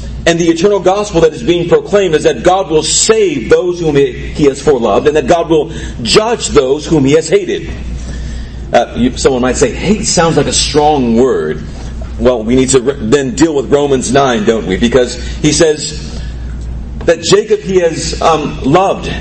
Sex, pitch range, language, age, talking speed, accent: male, 125-195 Hz, English, 40-59, 180 wpm, American